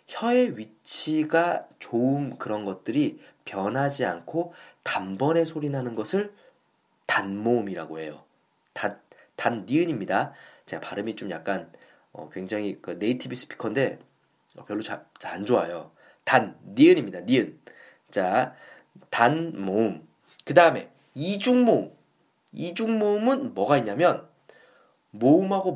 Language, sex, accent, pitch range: Korean, male, native, 125-195 Hz